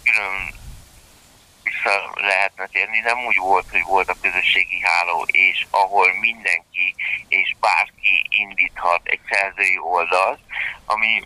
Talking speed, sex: 110 wpm, male